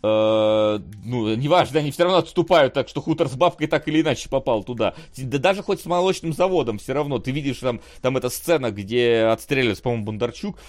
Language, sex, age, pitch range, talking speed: Russian, male, 30-49, 100-140 Hz, 195 wpm